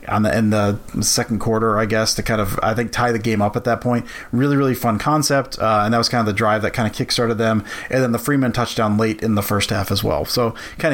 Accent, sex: American, male